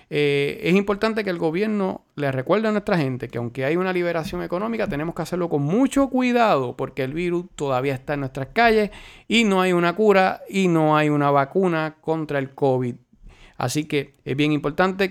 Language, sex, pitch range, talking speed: Spanish, male, 145-200 Hz, 195 wpm